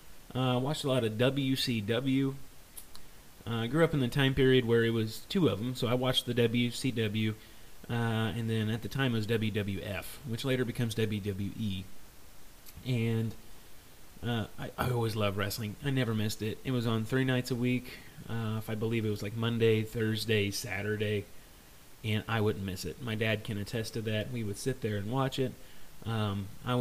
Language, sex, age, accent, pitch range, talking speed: English, male, 30-49, American, 105-125 Hz, 190 wpm